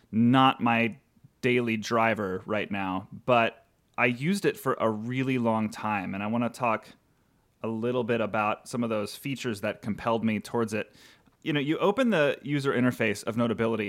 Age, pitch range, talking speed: 30-49, 110-145 Hz, 180 wpm